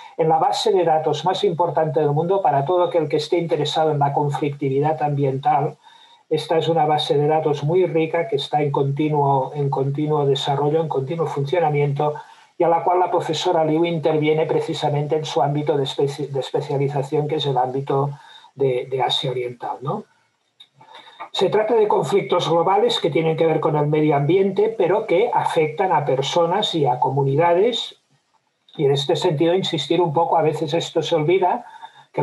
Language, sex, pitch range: Spanish, male, 140-170 Hz